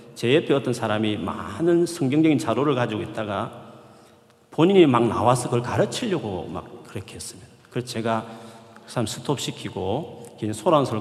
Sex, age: male, 40-59